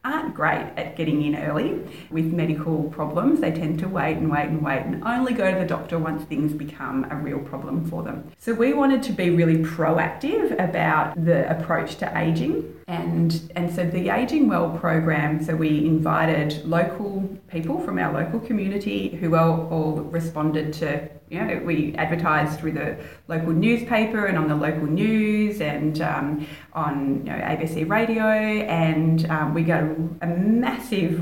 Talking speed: 165 wpm